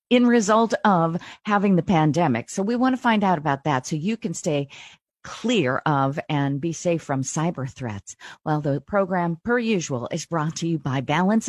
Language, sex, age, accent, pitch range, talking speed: English, female, 50-69, American, 155-210 Hz, 195 wpm